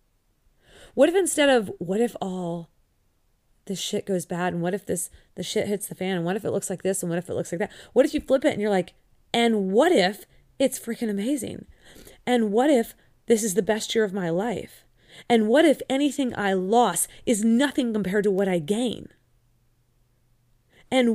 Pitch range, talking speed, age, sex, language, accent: 165-235 Hz, 205 wpm, 30-49, female, English, American